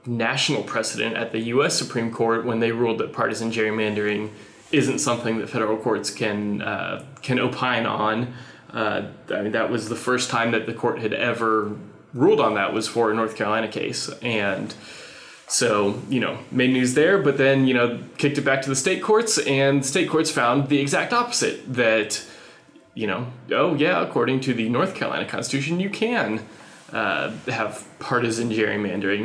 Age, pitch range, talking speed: 20-39, 110-135 Hz, 180 wpm